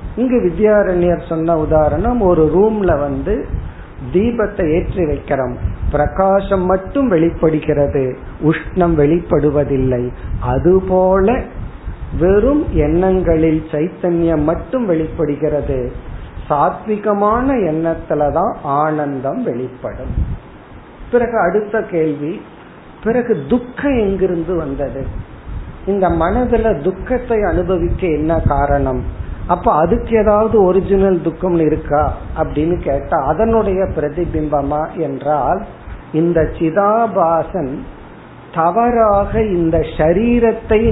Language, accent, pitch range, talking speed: Tamil, native, 150-200 Hz, 80 wpm